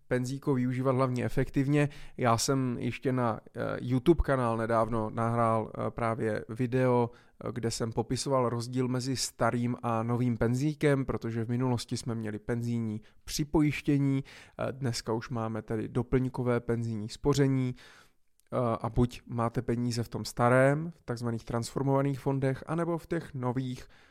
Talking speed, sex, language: 130 wpm, male, Czech